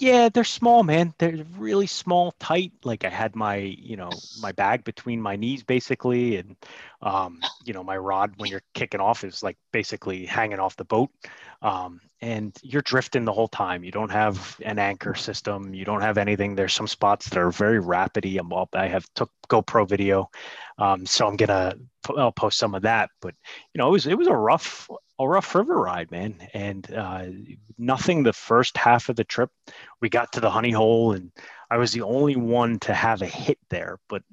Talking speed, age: 205 wpm, 30-49